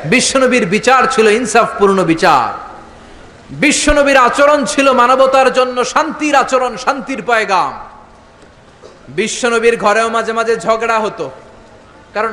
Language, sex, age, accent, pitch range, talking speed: Bengali, male, 30-49, native, 195-235 Hz, 90 wpm